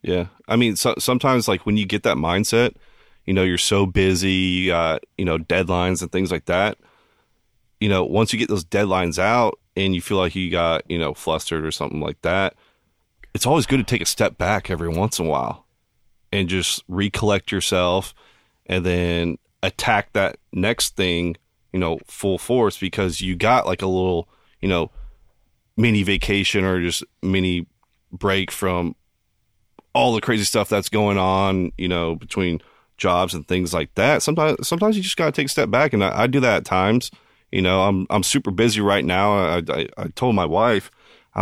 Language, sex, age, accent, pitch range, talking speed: English, male, 30-49, American, 90-105 Hz, 195 wpm